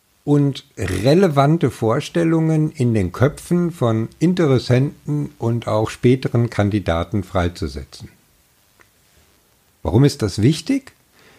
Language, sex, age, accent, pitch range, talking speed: German, male, 50-69, German, 100-140 Hz, 90 wpm